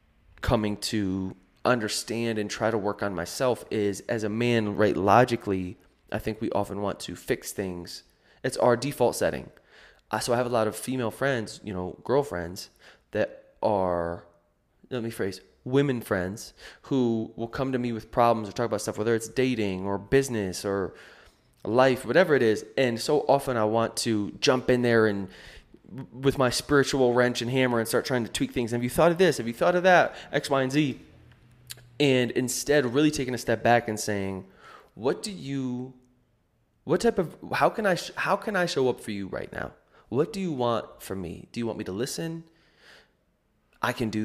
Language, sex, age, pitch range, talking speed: English, male, 20-39, 105-130 Hz, 195 wpm